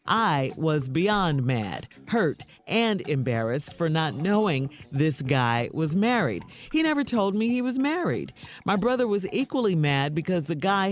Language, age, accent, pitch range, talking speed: English, 50-69, American, 140-210 Hz, 160 wpm